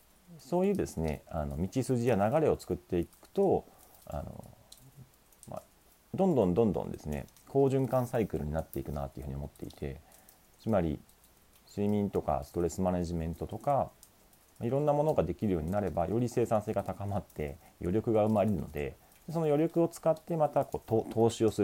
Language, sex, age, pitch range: Japanese, male, 40-59, 80-120 Hz